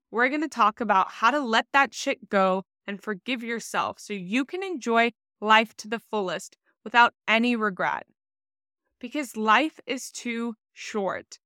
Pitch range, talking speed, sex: 195-250 Hz, 155 wpm, female